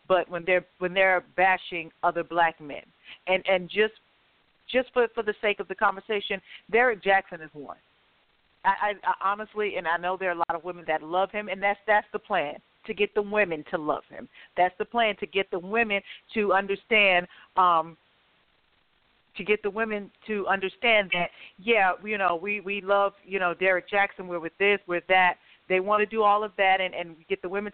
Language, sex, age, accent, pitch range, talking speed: English, female, 40-59, American, 180-215 Hz, 210 wpm